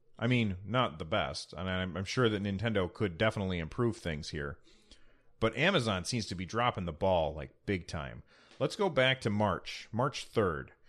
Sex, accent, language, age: male, American, English, 30-49